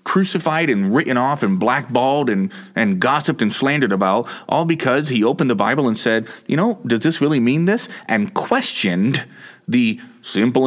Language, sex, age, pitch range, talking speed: English, male, 30-49, 110-180 Hz, 175 wpm